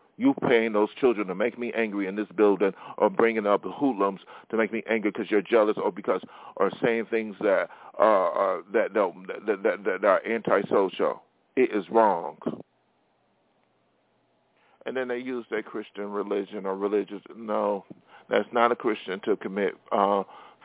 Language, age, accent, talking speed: English, 50-69, American, 165 wpm